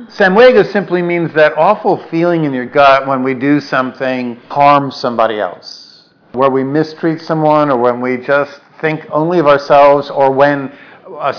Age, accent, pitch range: 50-69, American, 125-165 Hz